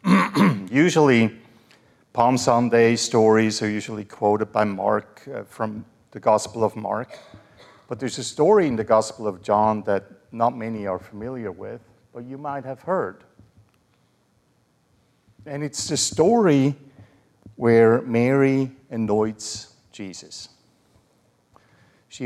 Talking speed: 120 wpm